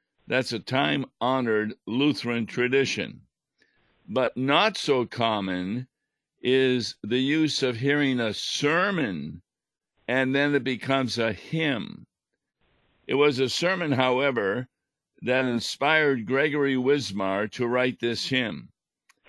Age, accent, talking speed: 50-69, American, 110 wpm